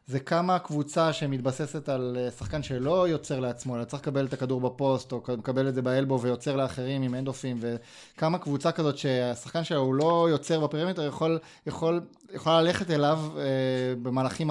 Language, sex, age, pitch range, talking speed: Hebrew, male, 20-39, 130-160 Hz, 165 wpm